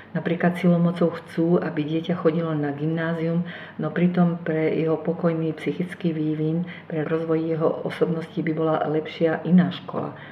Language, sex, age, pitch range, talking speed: Slovak, female, 50-69, 150-180 Hz, 140 wpm